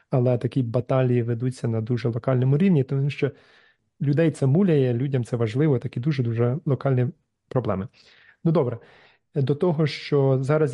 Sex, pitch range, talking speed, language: male, 120-140 Hz, 145 wpm, Ukrainian